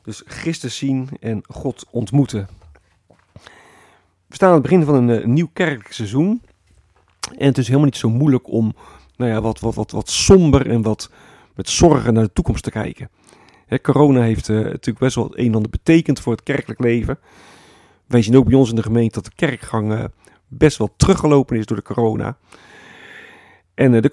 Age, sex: 40-59, male